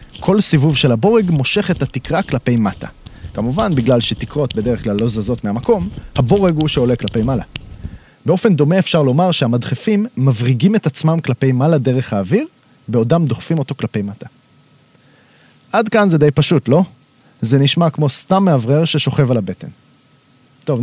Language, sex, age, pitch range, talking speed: Hebrew, male, 30-49, 125-180 Hz, 155 wpm